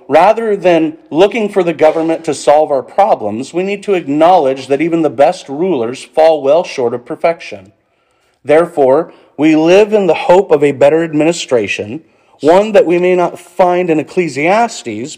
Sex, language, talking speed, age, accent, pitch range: male, English, 165 wpm, 40-59, American, 135-185 Hz